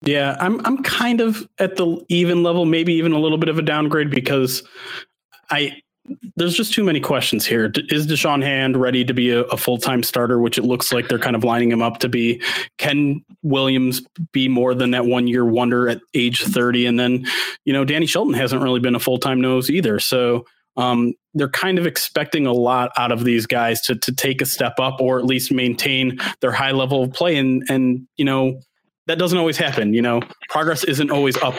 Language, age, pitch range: English, 30-49, 125-155 Hz